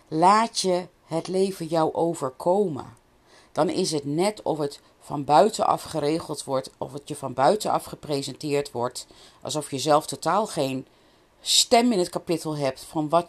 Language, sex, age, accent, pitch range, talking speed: Dutch, female, 40-59, Dutch, 140-190 Hz, 160 wpm